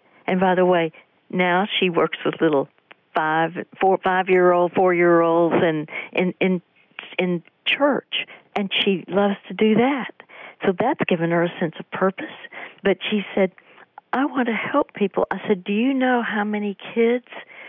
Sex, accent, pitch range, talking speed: female, American, 180-225 Hz, 150 wpm